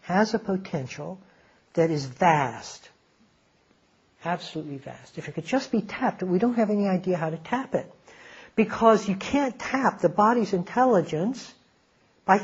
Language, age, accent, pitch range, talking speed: English, 60-79, American, 160-220 Hz, 150 wpm